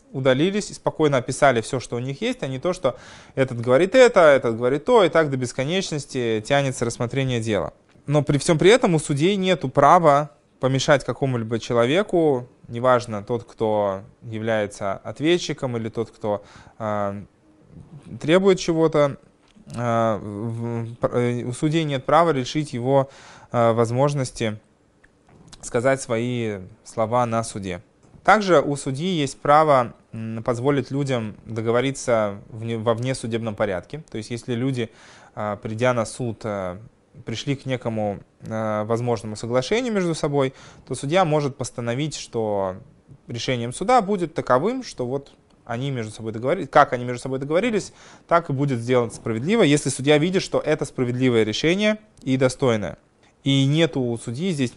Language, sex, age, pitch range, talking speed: Russian, male, 20-39, 115-150 Hz, 135 wpm